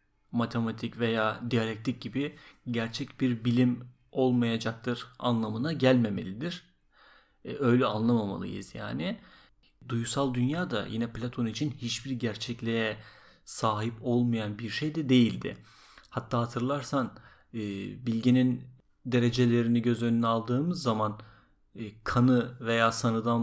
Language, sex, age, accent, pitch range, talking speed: Turkish, male, 40-59, native, 110-130 Hz, 95 wpm